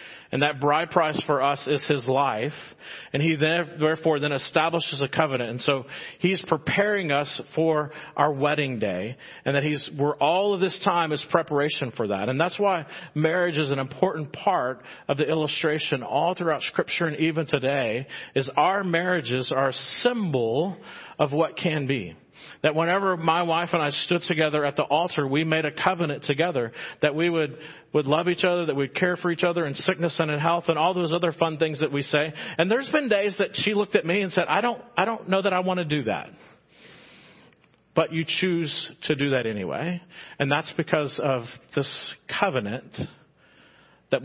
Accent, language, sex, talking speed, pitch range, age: American, English, male, 195 wpm, 140-175 Hz, 40-59